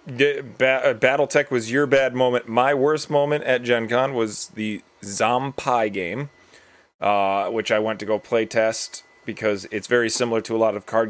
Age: 30-49